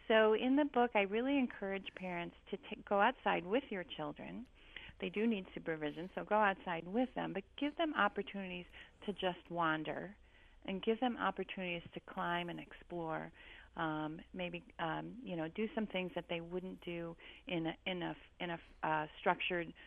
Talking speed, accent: 180 wpm, American